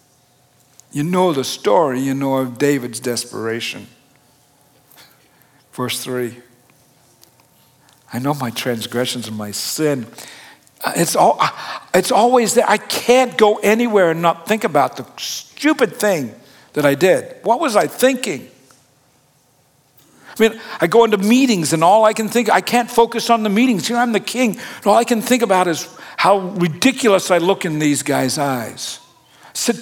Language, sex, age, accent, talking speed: English, male, 60-79, American, 160 wpm